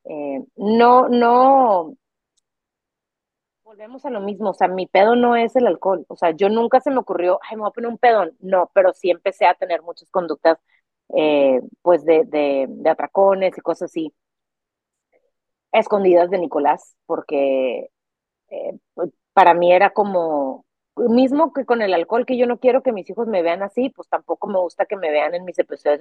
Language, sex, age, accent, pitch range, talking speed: Spanish, female, 30-49, Mexican, 170-240 Hz, 185 wpm